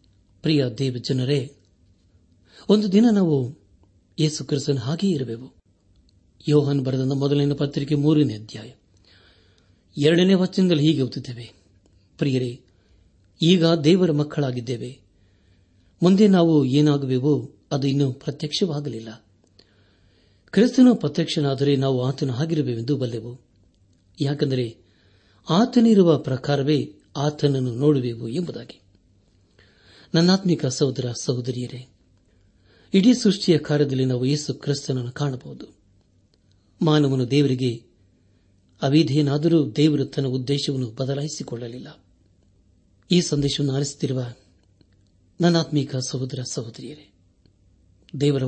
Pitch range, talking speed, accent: 100-150 Hz, 80 wpm, native